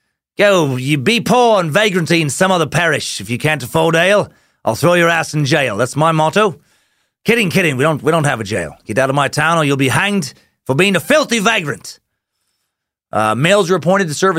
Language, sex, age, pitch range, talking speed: English, male, 30-49, 115-170 Hz, 225 wpm